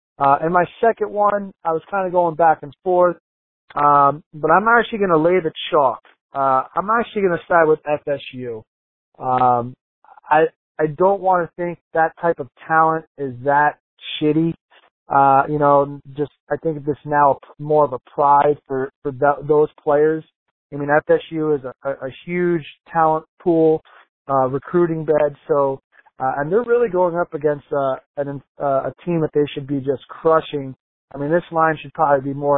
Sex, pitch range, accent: male, 140-160 Hz, American